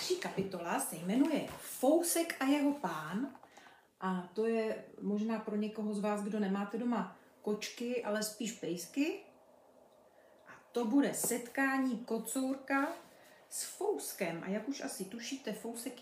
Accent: native